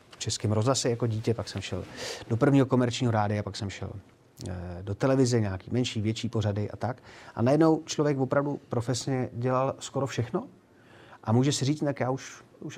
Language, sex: Czech, male